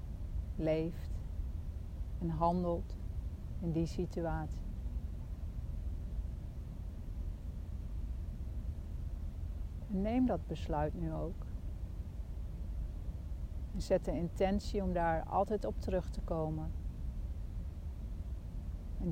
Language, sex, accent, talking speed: English, female, Dutch, 75 wpm